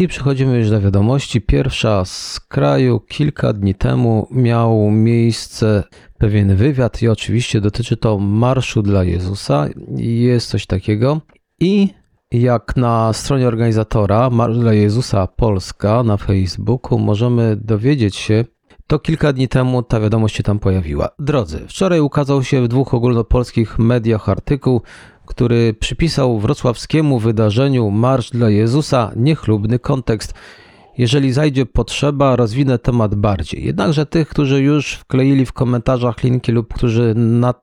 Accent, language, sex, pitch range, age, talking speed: native, Polish, male, 105-130 Hz, 40-59, 130 wpm